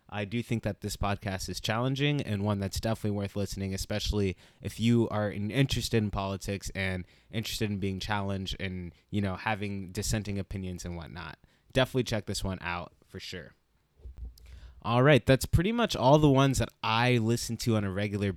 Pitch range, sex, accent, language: 100-115 Hz, male, American, English